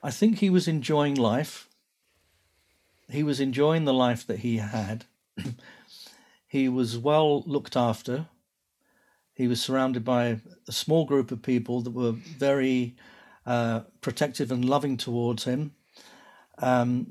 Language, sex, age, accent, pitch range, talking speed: English, male, 50-69, British, 120-145 Hz, 135 wpm